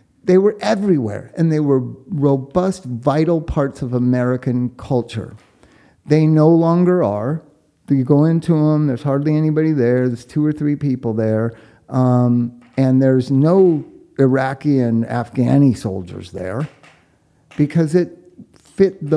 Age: 50-69